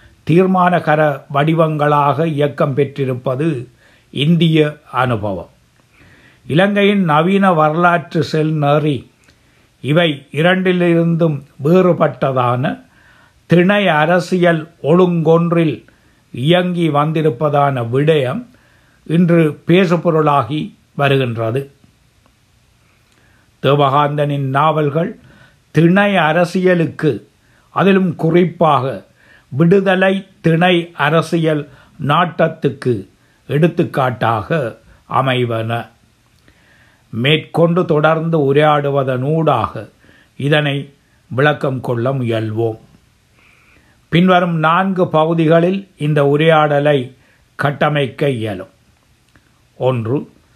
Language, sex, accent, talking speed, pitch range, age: Tamil, male, native, 60 wpm, 130-170 Hz, 60-79